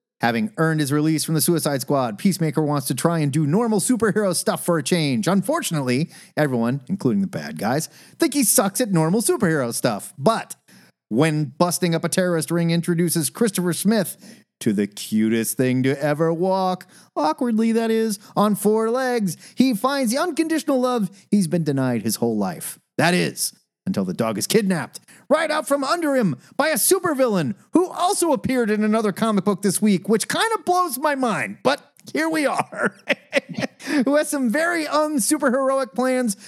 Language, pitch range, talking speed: English, 160-245 Hz, 175 wpm